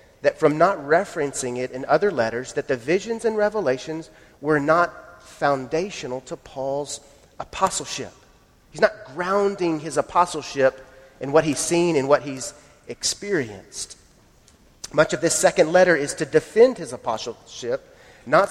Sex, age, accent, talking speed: male, 40-59, American, 140 wpm